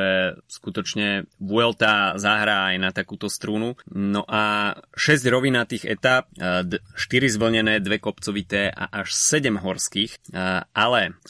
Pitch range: 95-110 Hz